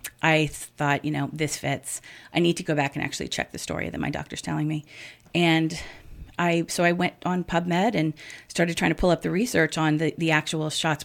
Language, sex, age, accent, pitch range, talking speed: English, female, 30-49, American, 150-175 Hz, 225 wpm